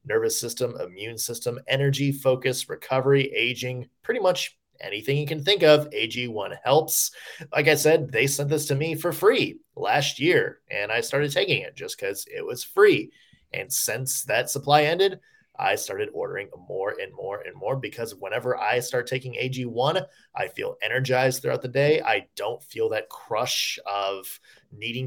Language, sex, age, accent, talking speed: English, male, 20-39, American, 170 wpm